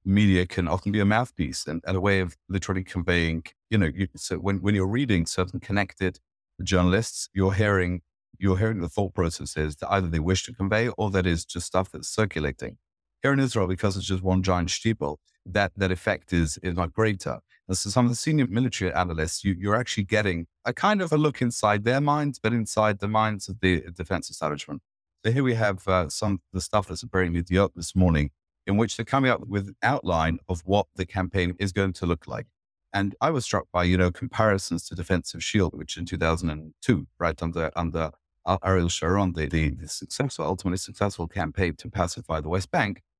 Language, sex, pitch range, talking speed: English, male, 90-110 Hz, 210 wpm